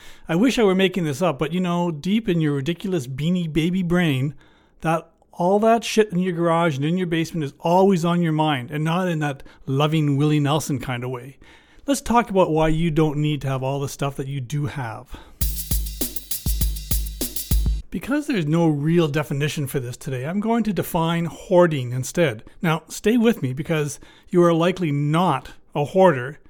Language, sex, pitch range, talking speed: English, male, 145-185 Hz, 190 wpm